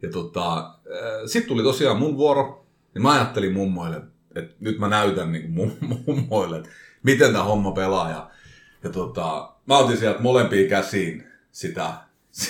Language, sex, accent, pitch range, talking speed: Finnish, male, native, 100-150 Hz, 150 wpm